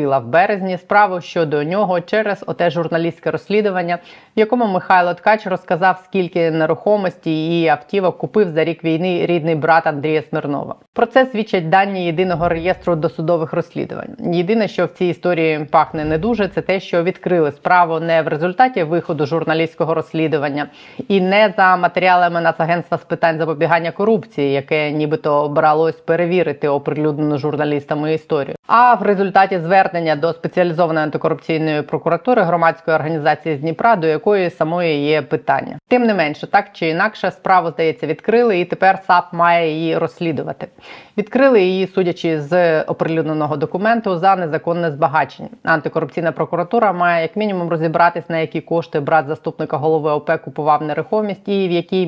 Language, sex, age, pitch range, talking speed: Ukrainian, female, 20-39, 160-190 Hz, 145 wpm